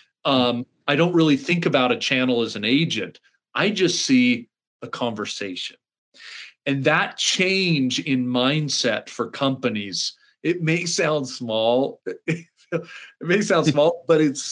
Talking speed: 135 wpm